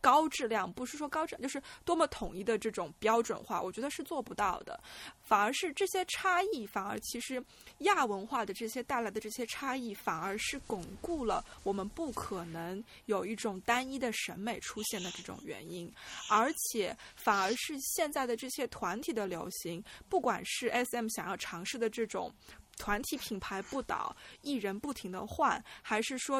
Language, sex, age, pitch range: Chinese, female, 20-39, 205-275 Hz